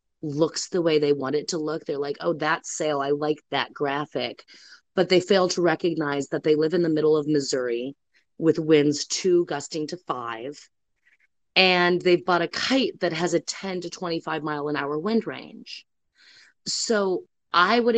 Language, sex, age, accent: English, female, 30-49, American